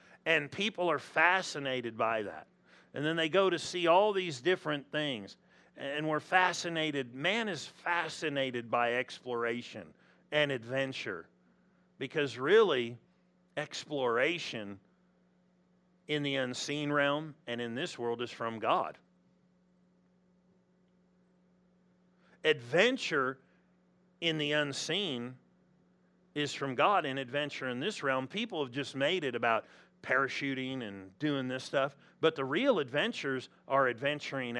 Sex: male